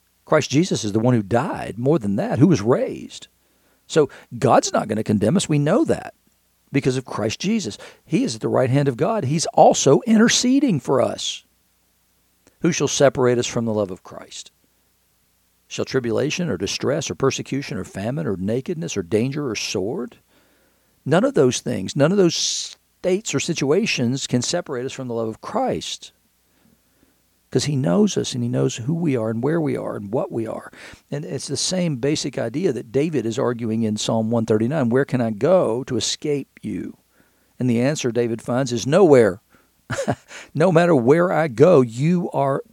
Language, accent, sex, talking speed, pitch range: English, American, male, 185 wpm, 115-155 Hz